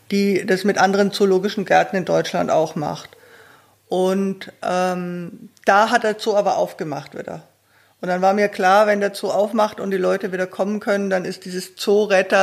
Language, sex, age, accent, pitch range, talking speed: German, female, 50-69, German, 185-220 Hz, 185 wpm